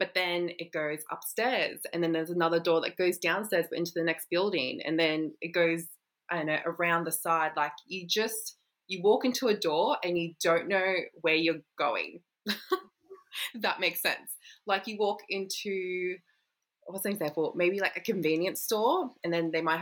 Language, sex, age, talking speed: English, female, 20-39, 185 wpm